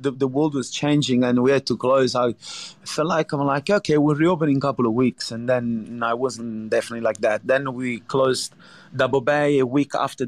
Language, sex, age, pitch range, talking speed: English, male, 30-49, 125-155 Hz, 215 wpm